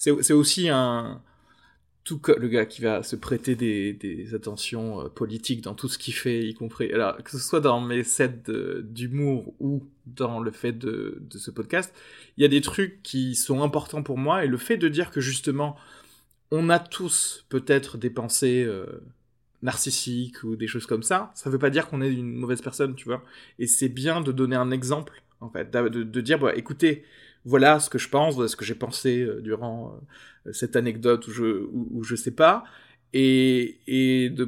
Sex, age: male, 20-39